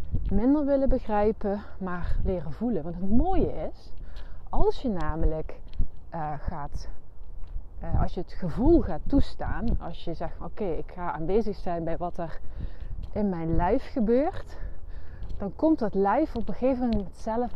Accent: Dutch